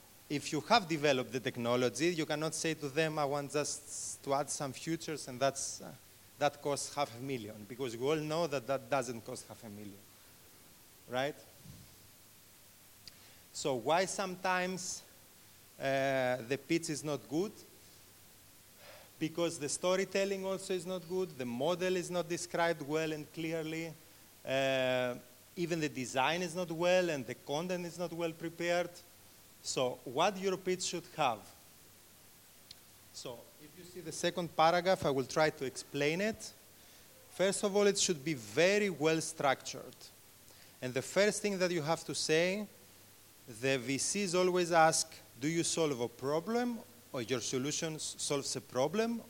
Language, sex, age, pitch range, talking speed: English, male, 30-49, 125-175 Hz, 155 wpm